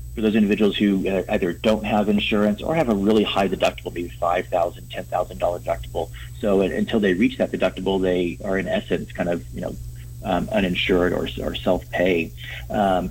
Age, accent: 40-59, American